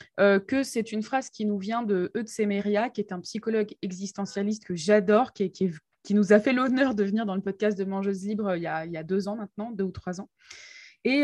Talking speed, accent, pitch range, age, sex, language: 260 wpm, French, 200-245 Hz, 20-39, female, French